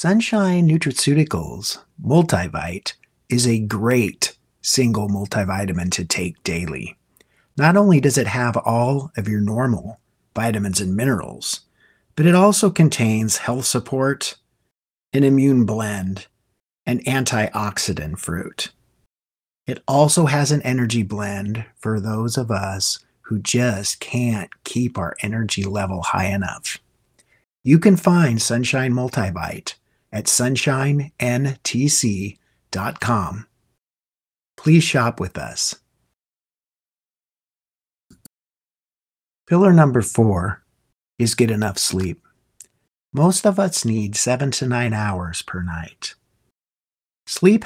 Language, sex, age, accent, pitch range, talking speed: English, male, 50-69, American, 105-140 Hz, 105 wpm